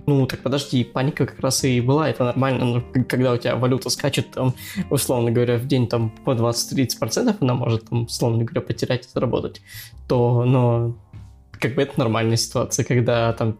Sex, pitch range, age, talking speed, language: male, 115-135 Hz, 20-39, 180 wpm, Russian